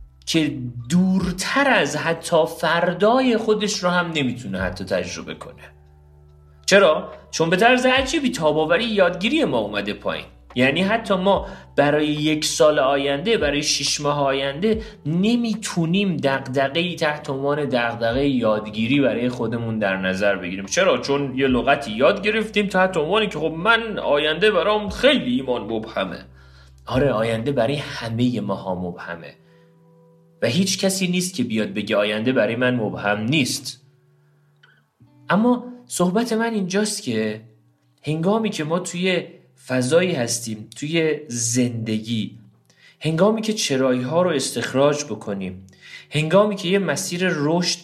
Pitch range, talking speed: 115-185 Hz, 130 wpm